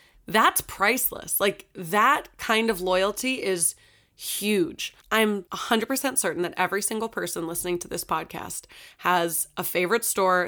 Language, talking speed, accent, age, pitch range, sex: English, 135 wpm, American, 20-39, 190-255 Hz, female